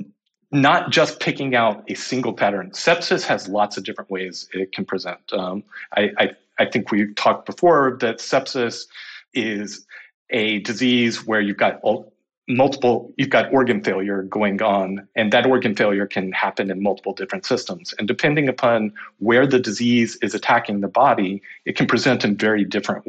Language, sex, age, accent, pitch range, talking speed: English, male, 40-59, American, 100-130 Hz, 170 wpm